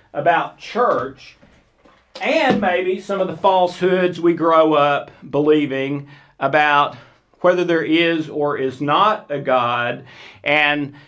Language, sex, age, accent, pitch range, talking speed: English, male, 50-69, American, 145-175 Hz, 120 wpm